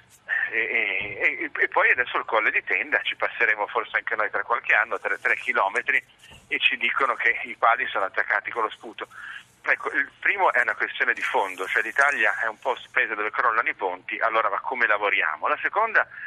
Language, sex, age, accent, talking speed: Italian, male, 40-59, native, 205 wpm